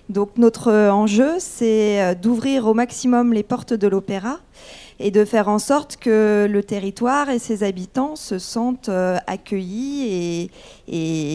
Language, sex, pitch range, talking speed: French, female, 180-235 Hz, 145 wpm